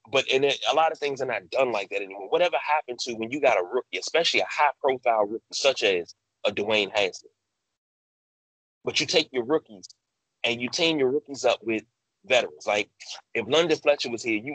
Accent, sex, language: American, male, English